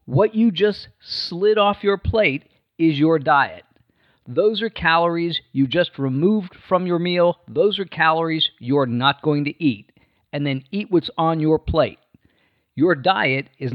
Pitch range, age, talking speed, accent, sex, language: 140-185 Hz, 50-69, 160 wpm, American, male, English